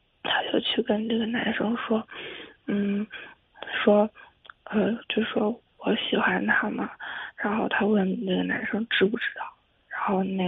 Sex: female